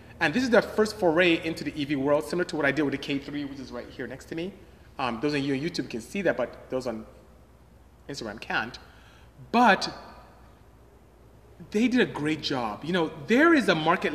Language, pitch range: English, 140-185 Hz